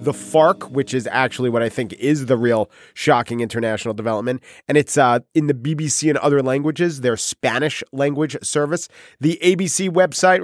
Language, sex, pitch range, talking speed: English, male, 125-175 Hz, 170 wpm